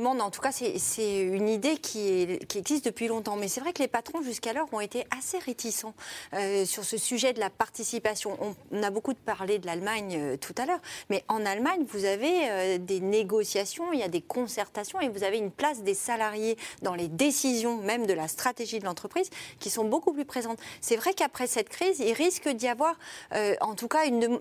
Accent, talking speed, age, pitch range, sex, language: French, 225 wpm, 30-49, 220-295 Hz, female, French